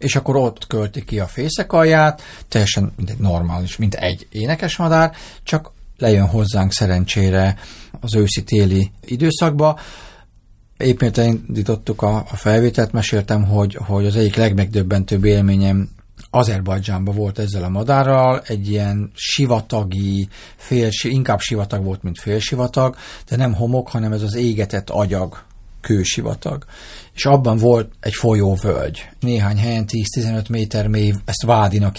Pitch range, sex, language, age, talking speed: 100-120 Hz, male, Hungarian, 40-59, 125 wpm